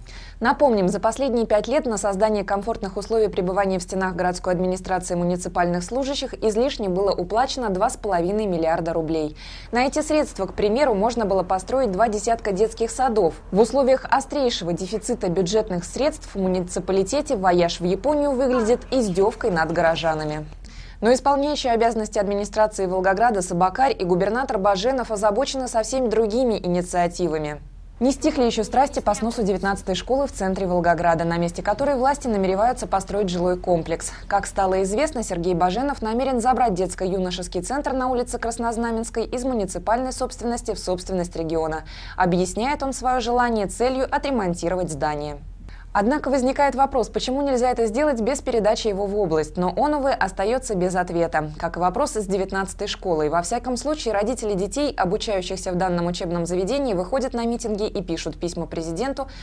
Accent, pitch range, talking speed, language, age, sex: native, 180-250 Hz, 150 wpm, Russian, 20-39, female